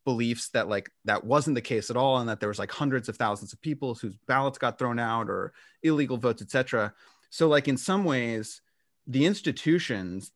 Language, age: English, 30-49